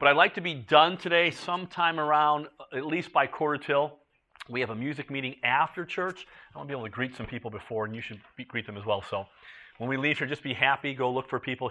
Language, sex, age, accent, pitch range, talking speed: English, male, 40-59, American, 130-160 Hz, 255 wpm